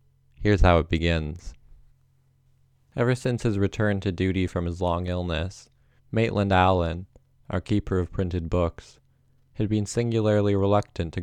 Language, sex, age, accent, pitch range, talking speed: English, male, 20-39, American, 95-120 Hz, 140 wpm